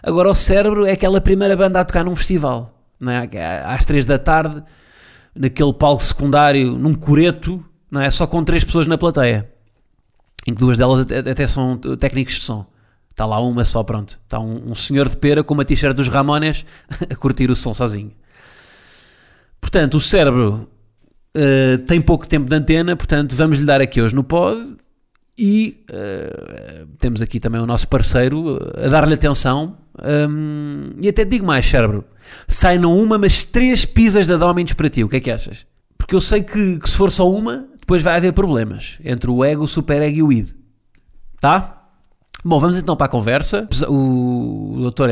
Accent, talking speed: Portuguese, 185 wpm